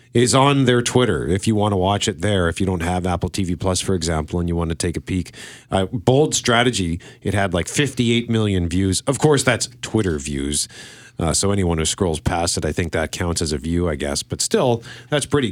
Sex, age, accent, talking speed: male, 40-59, American, 235 wpm